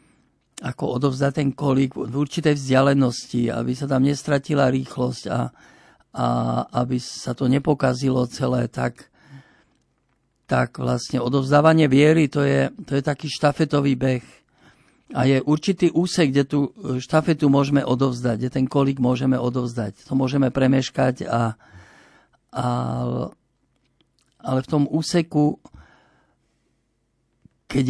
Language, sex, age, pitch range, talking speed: Slovak, male, 50-69, 120-140 Hz, 120 wpm